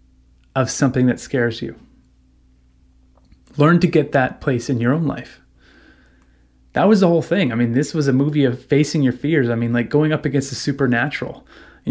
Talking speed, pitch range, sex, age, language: 190 wpm, 120-150 Hz, male, 30-49, English